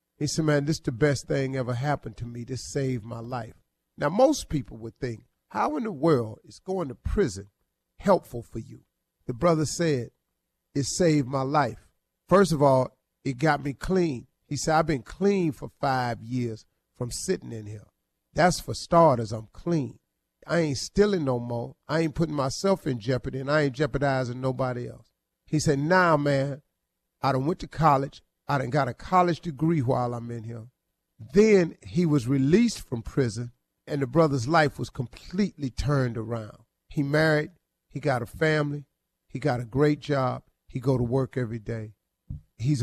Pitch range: 120-155 Hz